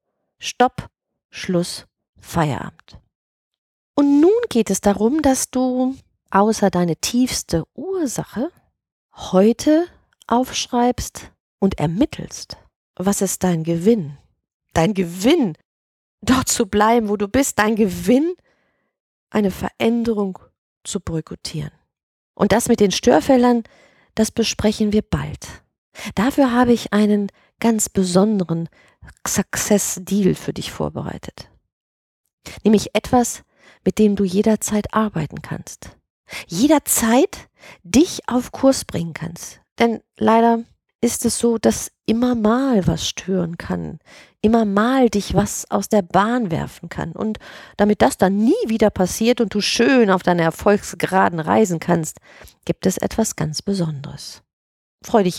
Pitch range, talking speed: 185-240 Hz, 120 wpm